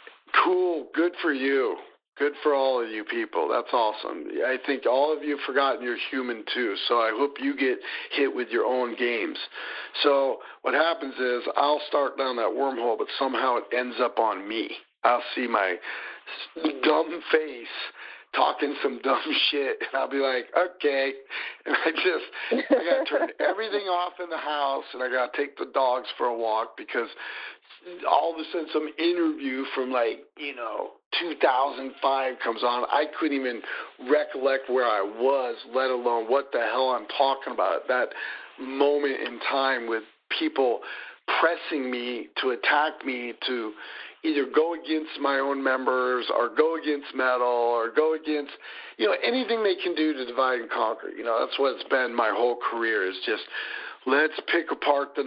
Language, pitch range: English, 130-165 Hz